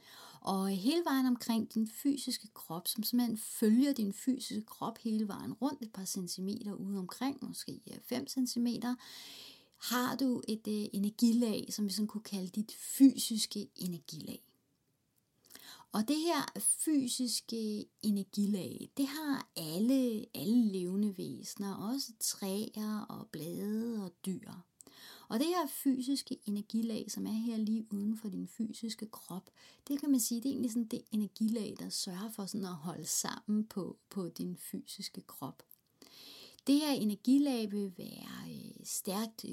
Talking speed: 145 wpm